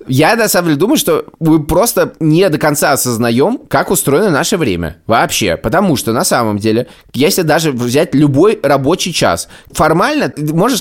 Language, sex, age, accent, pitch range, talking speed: Russian, male, 20-39, native, 120-175 Hz, 170 wpm